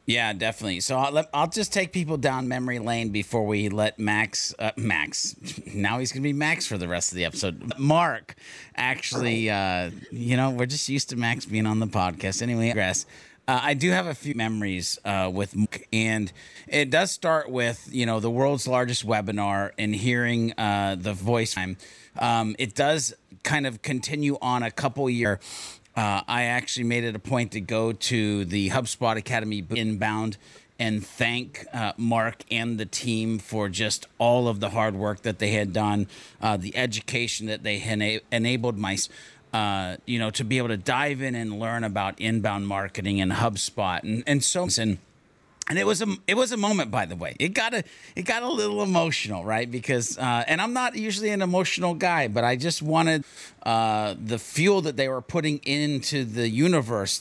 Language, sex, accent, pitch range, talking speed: English, male, American, 110-140 Hz, 195 wpm